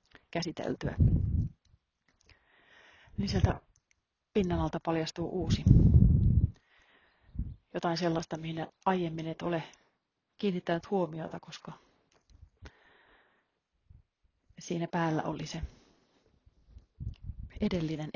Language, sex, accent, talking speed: Finnish, female, native, 70 wpm